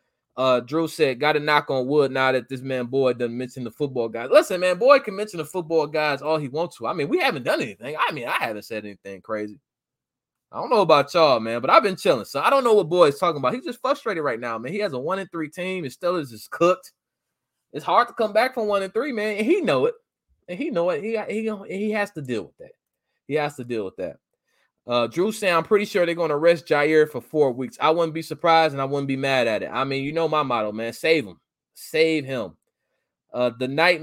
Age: 20-39